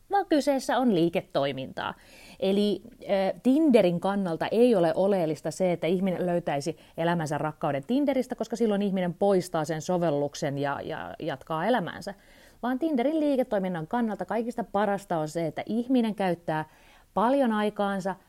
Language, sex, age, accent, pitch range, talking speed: Finnish, female, 30-49, native, 165-225 Hz, 130 wpm